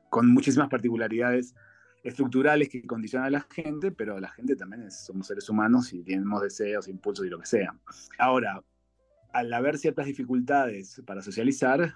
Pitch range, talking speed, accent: 105-150 Hz, 155 wpm, Argentinian